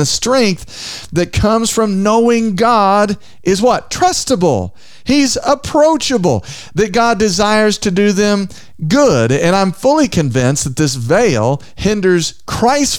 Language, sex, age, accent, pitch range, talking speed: English, male, 50-69, American, 135-205 Hz, 130 wpm